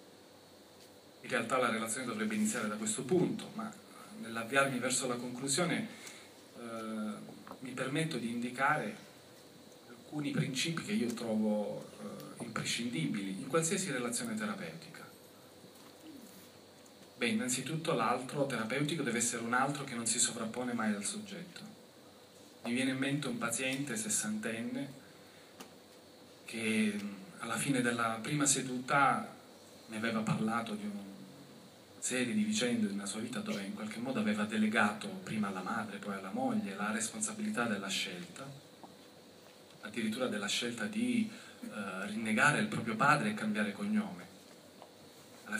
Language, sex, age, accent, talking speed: Italian, male, 40-59, native, 130 wpm